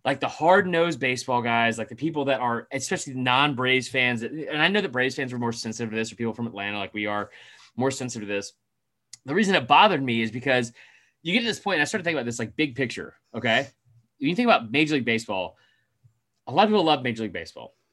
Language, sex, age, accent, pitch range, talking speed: English, male, 30-49, American, 110-150 Hz, 250 wpm